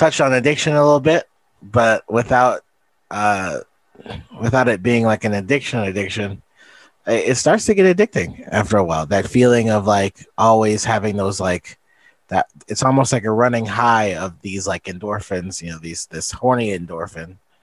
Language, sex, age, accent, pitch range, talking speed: English, male, 30-49, American, 95-120 Hz, 165 wpm